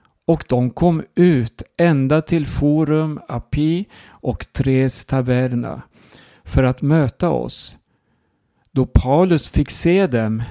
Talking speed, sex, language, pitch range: 115 wpm, male, Swedish, 120-150 Hz